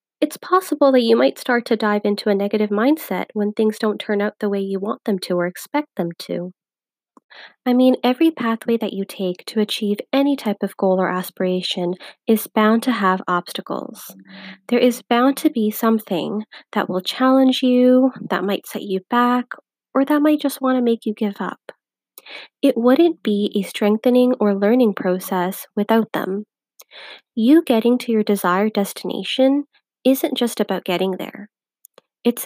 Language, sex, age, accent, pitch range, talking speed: English, female, 20-39, American, 200-255 Hz, 175 wpm